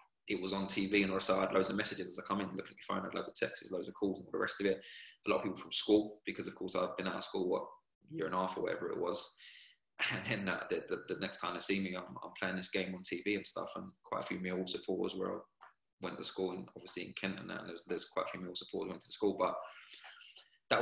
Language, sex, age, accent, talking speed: English, male, 20-39, British, 310 wpm